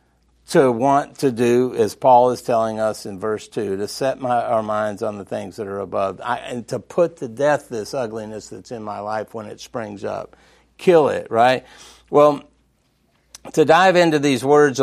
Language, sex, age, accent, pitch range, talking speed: English, male, 50-69, American, 115-145 Hz, 195 wpm